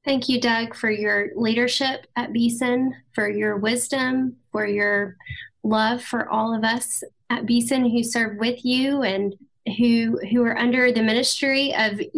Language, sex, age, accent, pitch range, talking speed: English, female, 10-29, American, 210-250 Hz, 160 wpm